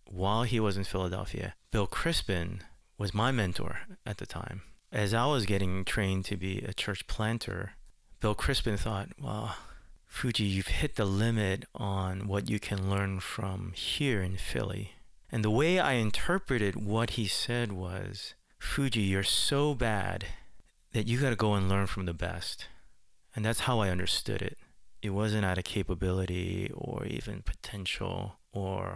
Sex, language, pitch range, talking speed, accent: male, English, 95-110 Hz, 160 wpm, American